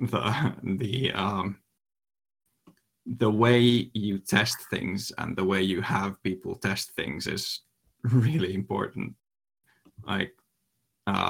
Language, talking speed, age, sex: English, 105 wpm, 20-39, male